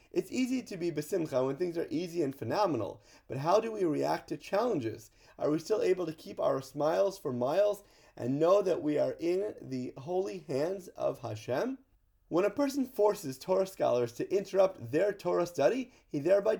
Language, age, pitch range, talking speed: English, 30-49, 145-205 Hz, 190 wpm